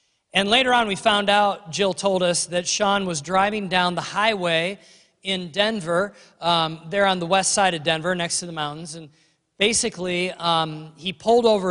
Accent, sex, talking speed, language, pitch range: American, male, 185 wpm, English, 165-195 Hz